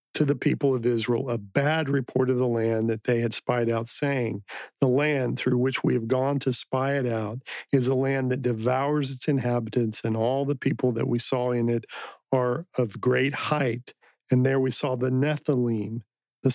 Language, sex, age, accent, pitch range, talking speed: English, male, 50-69, American, 120-140 Hz, 200 wpm